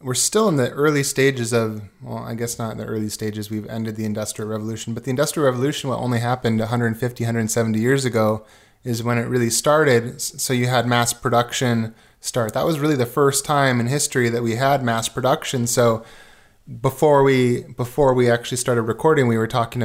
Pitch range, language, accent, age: 115-130 Hz, English, American, 20-39